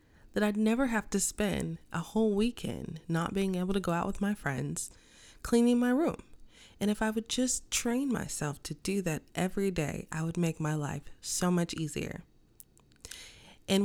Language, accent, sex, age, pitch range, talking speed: English, American, female, 20-39, 160-205 Hz, 180 wpm